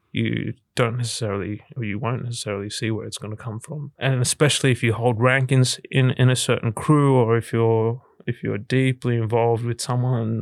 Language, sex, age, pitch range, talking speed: English, male, 20-39, 115-130 Hz, 200 wpm